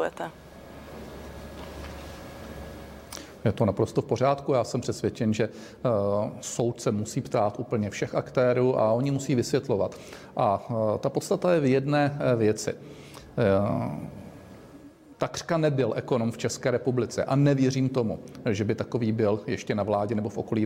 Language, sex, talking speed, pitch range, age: Czech, male, 140 wpm, 110-135 Hz, 40-59